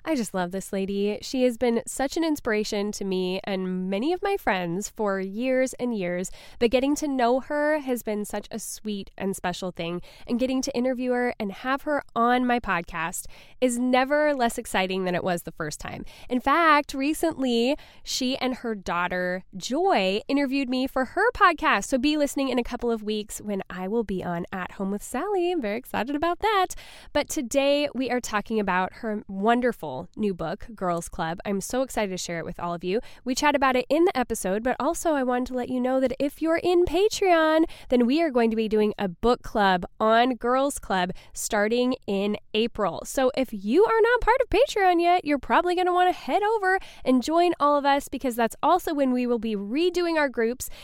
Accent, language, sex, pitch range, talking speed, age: American, English, female, 205-295 Hz, 215 wpm, 10-29